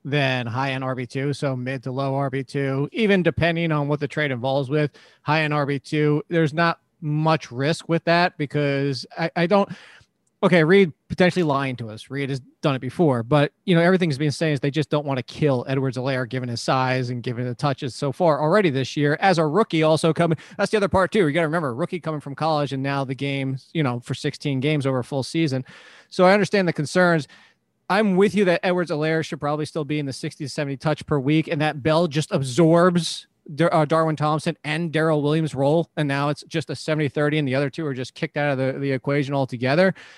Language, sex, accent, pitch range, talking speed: English, male, American, 140-170 Hz, 230 wpm